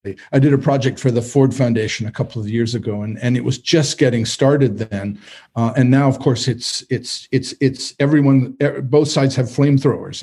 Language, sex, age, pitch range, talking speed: English, male, 50-69, 125-155 Hz, 205 wpm